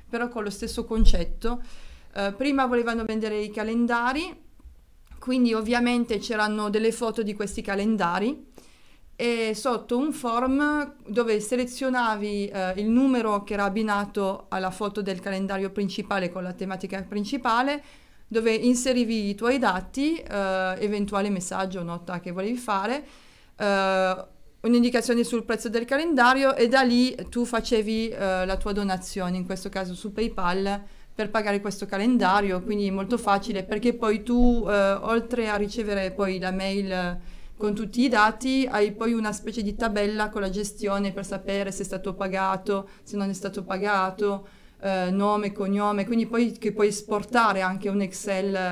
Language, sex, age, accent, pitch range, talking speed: Italian, female, 30-49, native, 195-230 Hz, 155 wpm